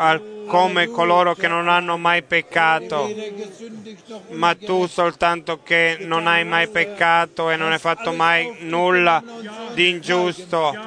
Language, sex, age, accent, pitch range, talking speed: Italian, male, 30-49, native, 165-195 Hz, 125 wpm